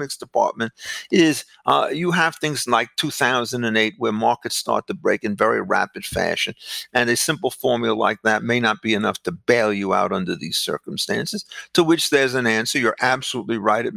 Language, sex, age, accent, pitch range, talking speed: English, male, 50-69, American, 115-155 Hz, 185 wpm